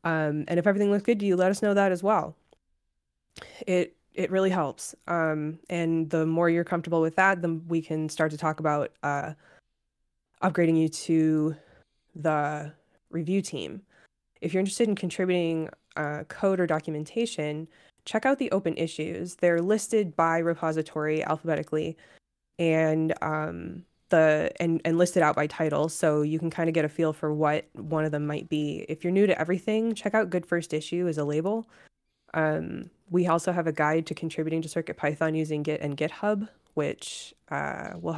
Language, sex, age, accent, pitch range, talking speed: English, female, 20-39, American, 155-175 Hz, 180 wpm